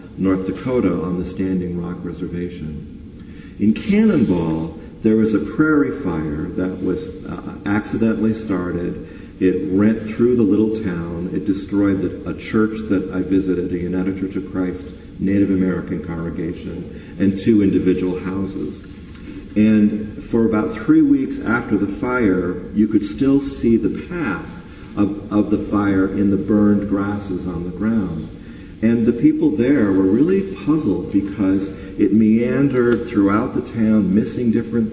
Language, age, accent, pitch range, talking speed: English, 50-69, American, 95-110 Hz, 145 wpm